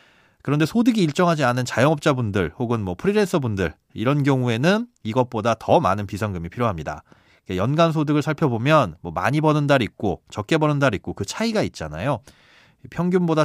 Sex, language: male, Korean